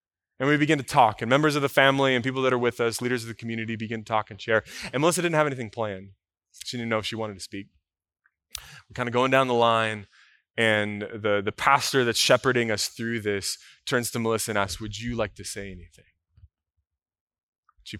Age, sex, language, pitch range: 20-39, male, English, 100-130 Hz